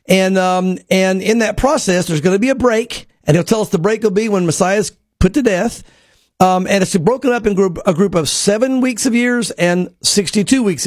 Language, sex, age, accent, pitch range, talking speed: English, male, 50-69, American, 175-215 Hz, 235 wpm